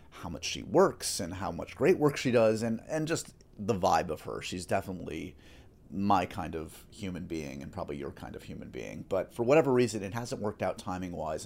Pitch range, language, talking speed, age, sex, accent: 85-110 Hz, English, 215 wpm, 30-49, male, American